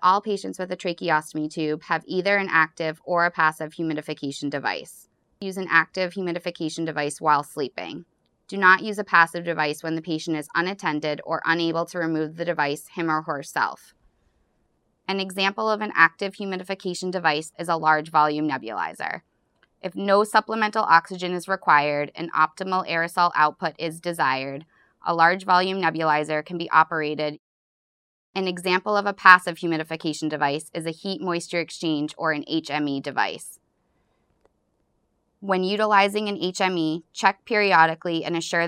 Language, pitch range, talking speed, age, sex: English, 155-185 Hz, 150 wpm, 20-39, female